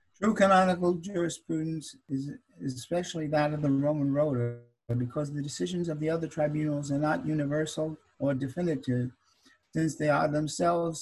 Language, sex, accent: English, male, American